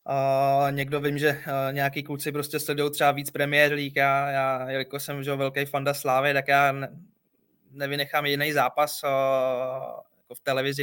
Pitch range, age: 135-145 Hz, 20-39